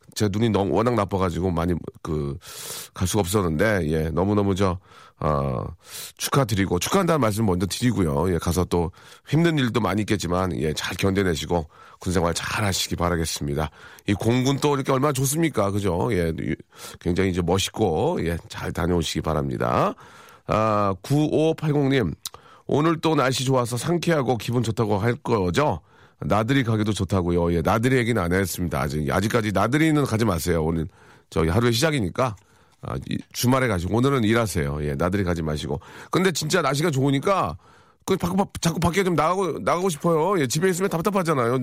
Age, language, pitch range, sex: 40-59, Korean, 90-145 Hz, male